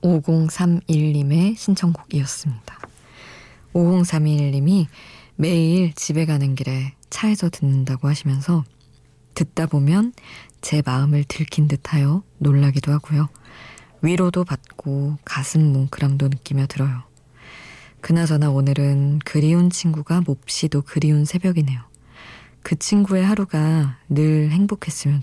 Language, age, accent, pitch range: Korean, 20-39, native, 140-165 Hz